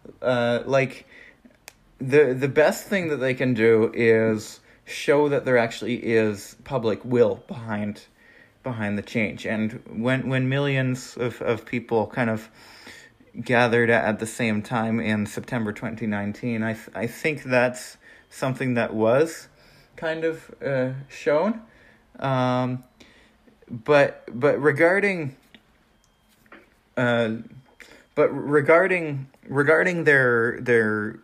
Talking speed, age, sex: 115 wpm, 20-39, male